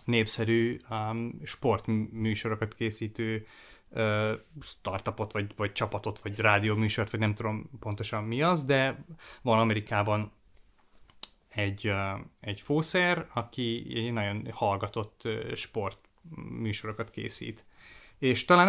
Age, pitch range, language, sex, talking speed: 30-49, 110-125 Hz, Hungarian, male, 110 wpm